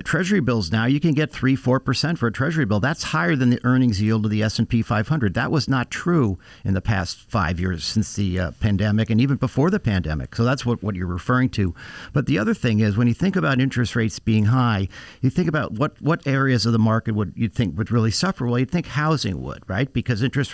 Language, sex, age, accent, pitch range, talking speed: English, male, 50-69, American, 110-150 Hz, 250 wpm